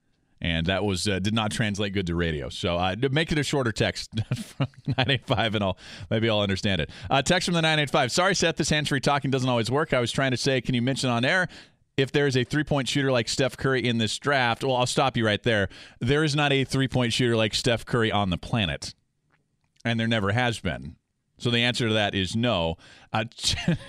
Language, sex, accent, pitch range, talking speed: English, male, American, 95-130 Hz, 230 wpm